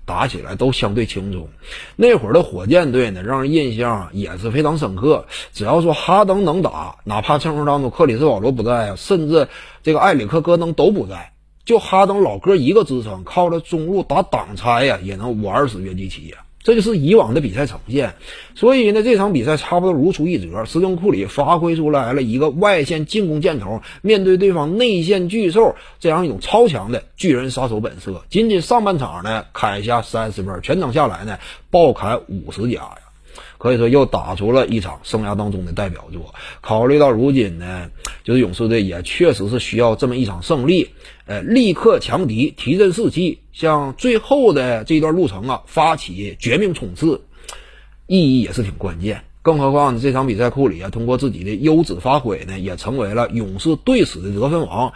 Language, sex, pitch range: Chinese, male, 105-175 Hz